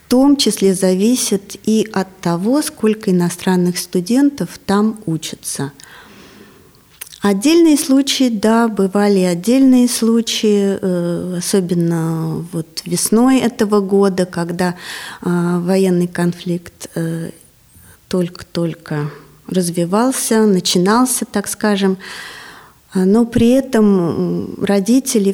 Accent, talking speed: native, 85 wpm